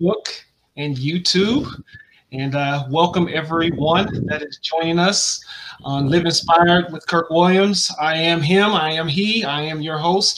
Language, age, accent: English, 30-49, American